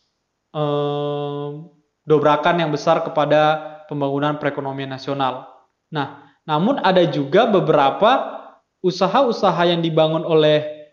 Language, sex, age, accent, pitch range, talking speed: Indonesian, male, 20-39, native, 160-195 Hz, 90 wpm